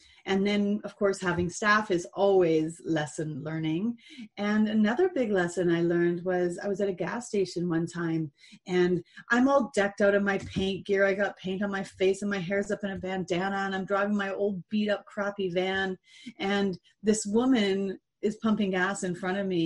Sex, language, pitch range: female, English, 185-240 Hz